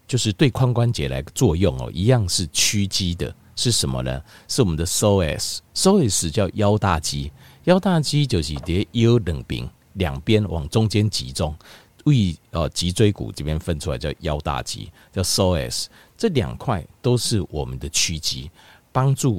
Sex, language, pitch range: male, Chinese, 85-125 Hz